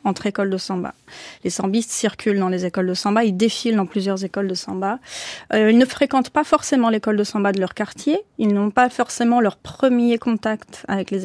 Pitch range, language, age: 200-250 Hz, French, 30-49